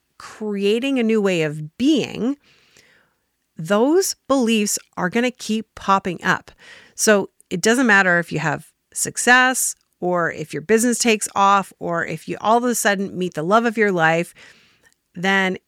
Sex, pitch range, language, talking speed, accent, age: female, 170-225 Hz, English, 160 wpm, American, 40-59